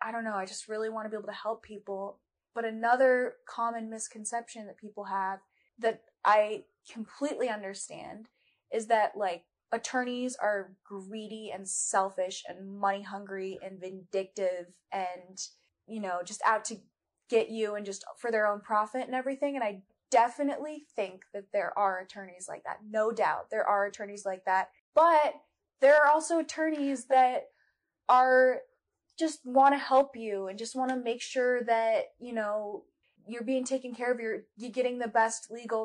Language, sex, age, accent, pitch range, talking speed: English, female, 20-39, American, 200-245 Hz, 165 wpm